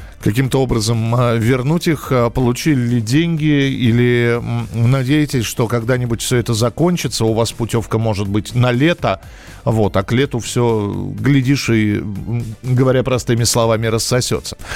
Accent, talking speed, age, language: native, 135 wpm, 40-59, Russian